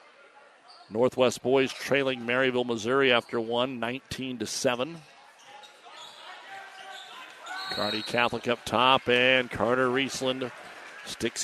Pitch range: 115-135 Hz